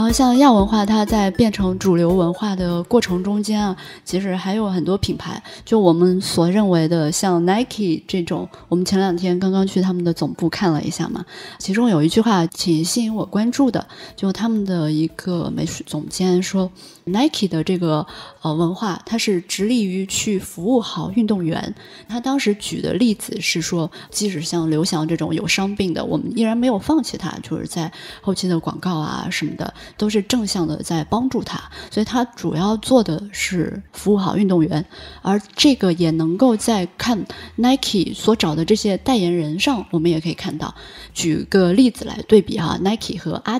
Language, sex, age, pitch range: Chinese, female, 20-39, 170-220 Hz